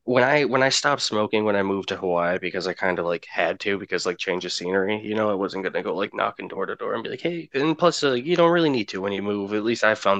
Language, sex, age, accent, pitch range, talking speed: English, male, 20-39, American, 100-145 Hz, 320 wpm